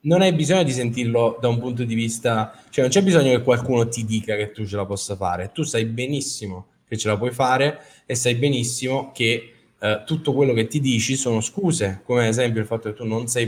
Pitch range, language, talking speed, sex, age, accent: 110-135 Hz, Italian, 235 wpm, male, 10-29, native